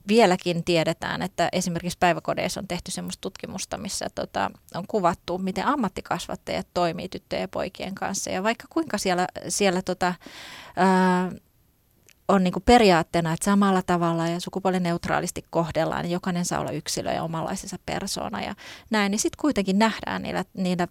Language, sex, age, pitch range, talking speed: Finnish, female, 30-49, 175-210 Hz, 150 wpm